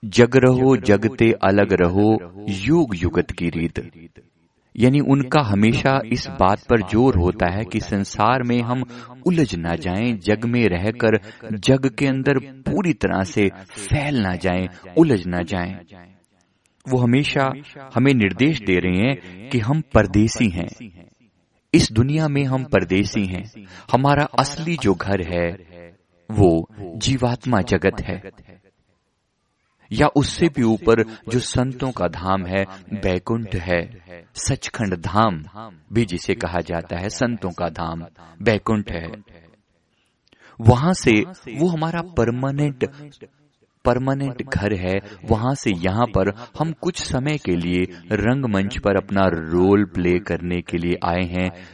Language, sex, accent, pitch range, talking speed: Hindi, male, native, 90-125 Hz, 135 wpm